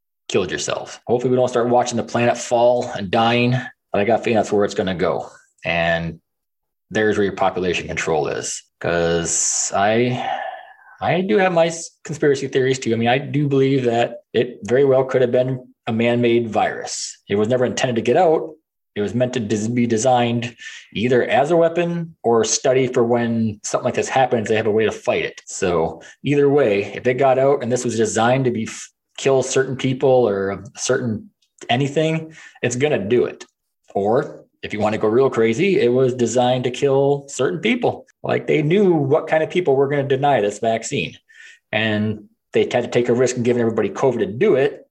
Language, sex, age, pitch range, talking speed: English, male, 20-39, 115-150 Hz, 205 wpm